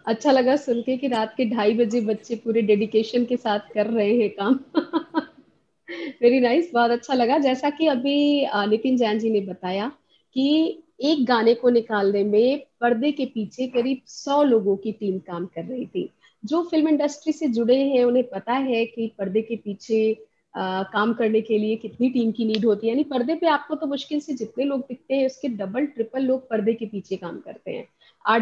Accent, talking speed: native, 200 wpm